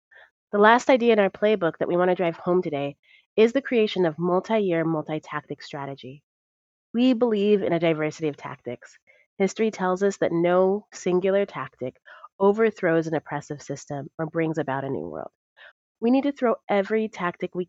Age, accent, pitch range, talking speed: 30-49, American, 160-200 Hz, 175 wpm